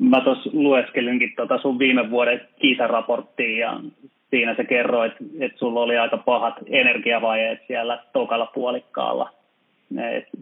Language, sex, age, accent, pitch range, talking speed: Finnish, male, 20-39, native, 115-130 Hz, 125 wpm